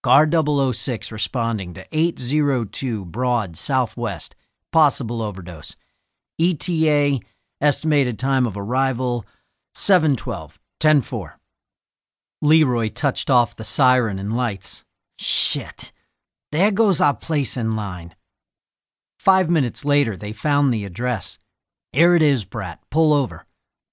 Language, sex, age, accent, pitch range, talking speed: English, male, 50-69, American, 105-145 Hz, 105 wpm